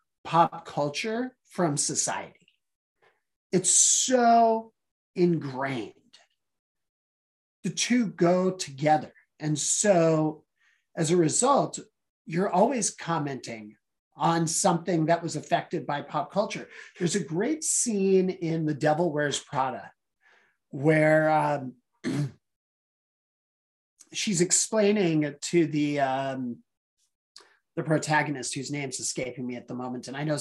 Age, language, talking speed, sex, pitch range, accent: 40-59, English, 110 wpm, male, 150-200 Hz, American